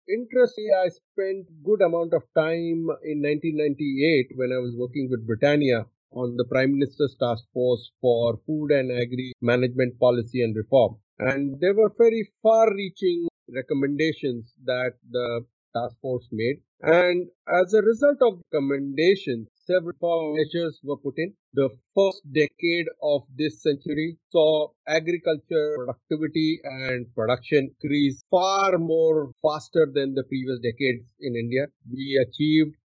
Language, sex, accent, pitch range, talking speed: English, male, Indian, 130-170 Hz, 135 wpm